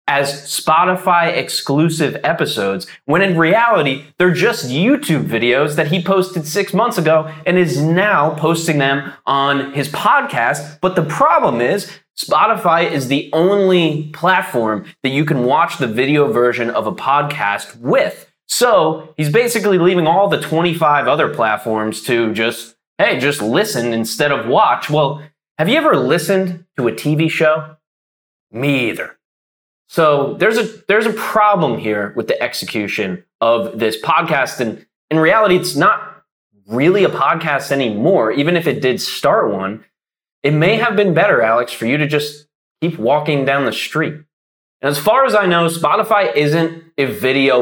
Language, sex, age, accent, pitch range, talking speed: English, male, 20-39, American, 120-170 Hz, 155 wpm